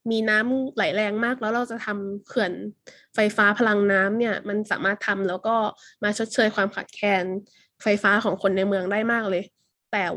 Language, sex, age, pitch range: Thai, female, 20-39, 200-250 Hz